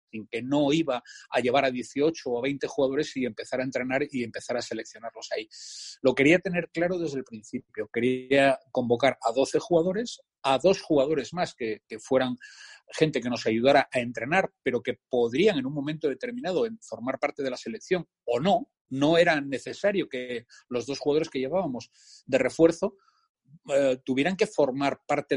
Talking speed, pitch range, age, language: 175 wpm, 125-185 Hz, 30-49, Spanish